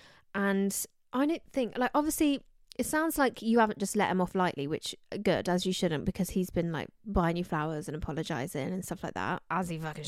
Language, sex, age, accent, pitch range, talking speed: English, female, 20-39, British, 180-245 Hz, 220 wpm